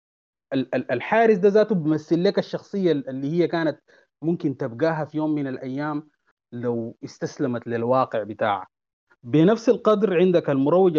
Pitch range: 125-170 Hz